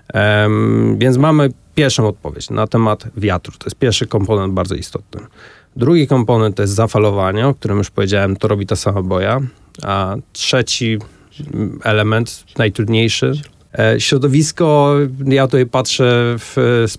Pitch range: 110-125 Hz